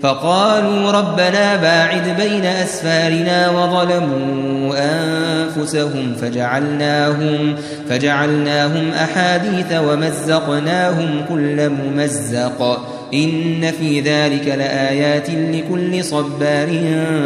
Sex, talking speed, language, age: male, 65 wpm, Arabic, 20-39